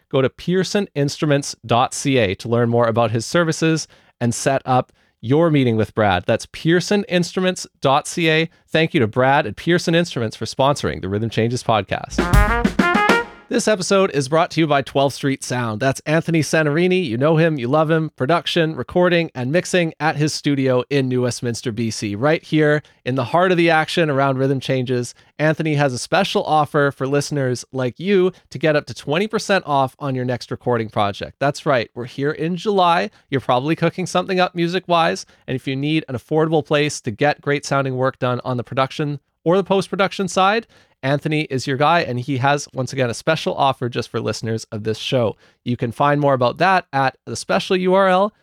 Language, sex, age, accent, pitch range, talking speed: English, male, 30-49, American, 125-170 Hz, 190 wpm